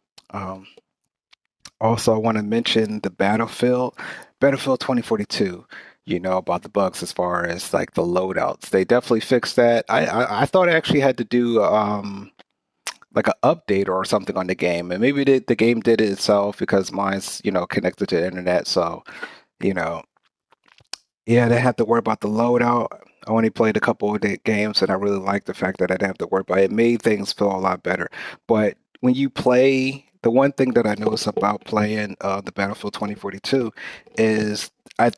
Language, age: English, 30-49